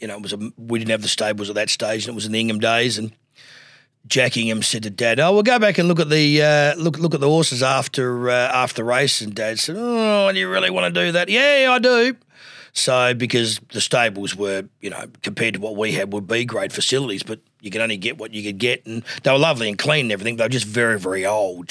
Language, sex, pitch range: English, male, 110-135 Hz